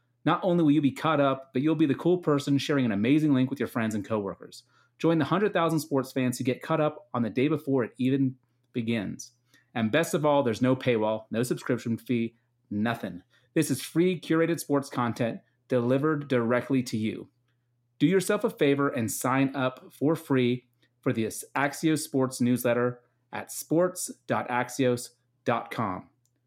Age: 30-49